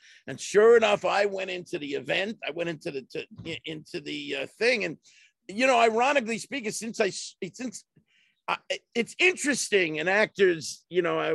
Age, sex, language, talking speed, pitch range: 50-69, male, English, 165 wpm, 180-265 Hz